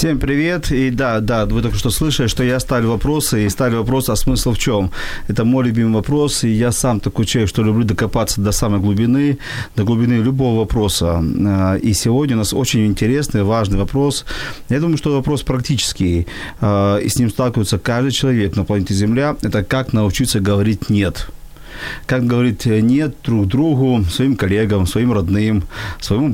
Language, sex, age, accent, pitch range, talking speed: Ukrainian, male, 40-59, native, 105-135 Hz, 175 wpm